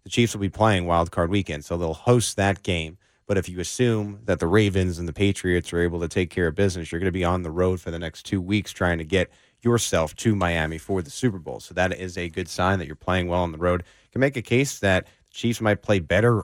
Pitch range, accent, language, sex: 90-110 Hz, American, English, male